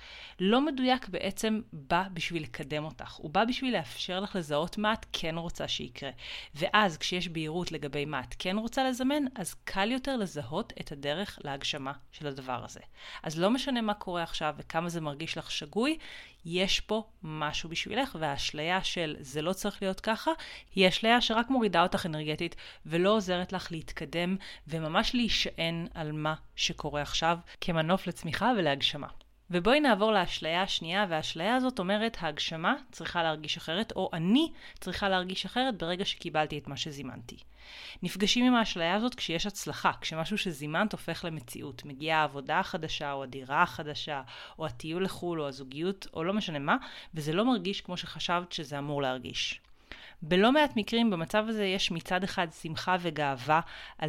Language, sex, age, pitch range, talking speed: Hebrew, female, 30-49, 155-210 Hz, 160 wpm